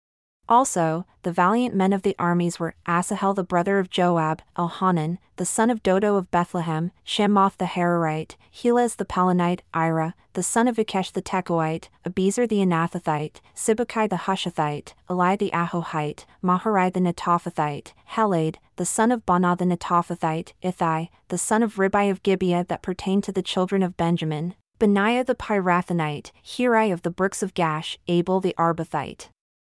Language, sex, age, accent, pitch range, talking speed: English, female, 30-49, American, 170-195 Hz, 155 wpm